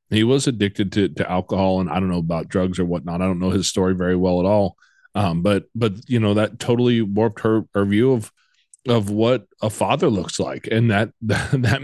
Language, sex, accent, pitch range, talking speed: English, male, American, 100-120 Hz, 225 wpm